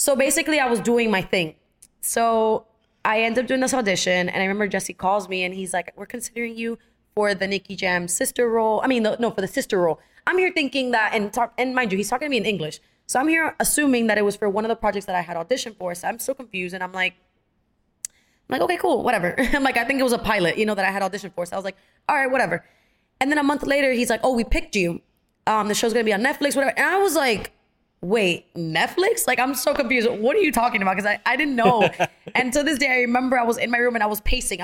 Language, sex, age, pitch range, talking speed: English, female, 20-39, 195-270 Hz, 275 wpm